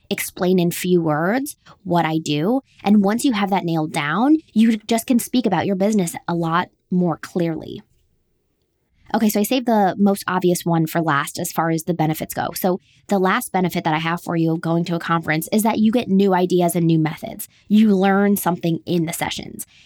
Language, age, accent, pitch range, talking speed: English, 20-39, American, 170-230 Hz, 210 wpm